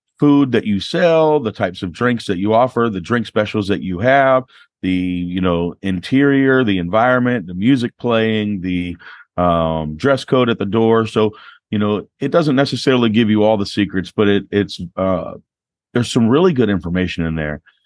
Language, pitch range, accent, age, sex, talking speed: English, 90-110 Hz, American, 40-59, male, 185 wpm